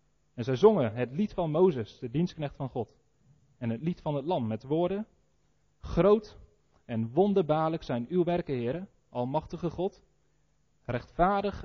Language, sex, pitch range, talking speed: Dutch, male, 120-175 Hz, 150 wpm